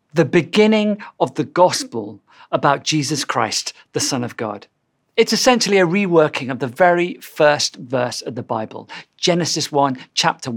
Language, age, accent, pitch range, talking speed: English, 40-59, British, 135-195 Hz, 155 wpm